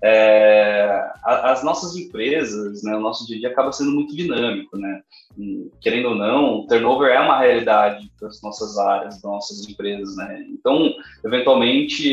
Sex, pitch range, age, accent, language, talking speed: male, 115-155 Hz, 20-39, Brazilian, Portuguese, 165 wpm